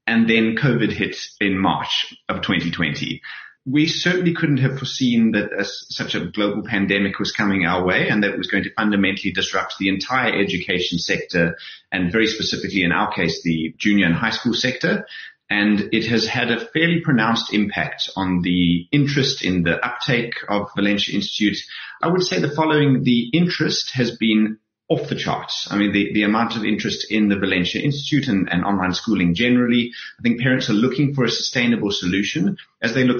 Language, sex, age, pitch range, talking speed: English, male, 30-49, 95-125 Hz, 190 wpm